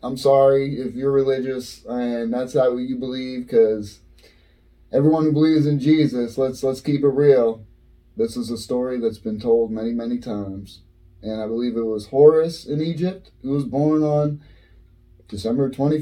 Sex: male